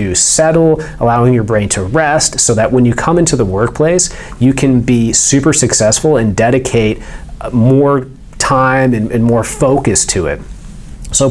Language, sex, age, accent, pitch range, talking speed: English, male, 30-49, American, 110-135 Hz, 160 wpm